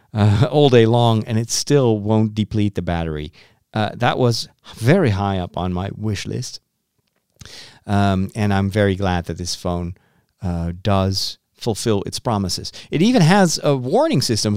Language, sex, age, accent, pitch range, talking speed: English, male, 40-59, American, 100-140 Hz, 165 wpm